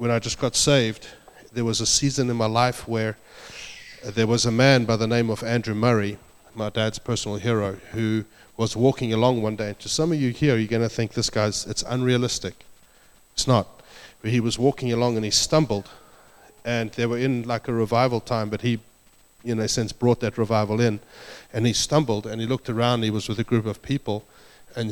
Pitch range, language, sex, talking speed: 110-120 Hz, English, male, 210 wpm